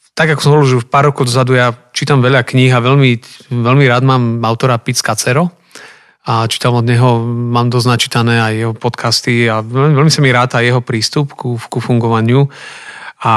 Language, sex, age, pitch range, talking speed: Slovak, male, 30-49, 120-140 Hz, 190 wpm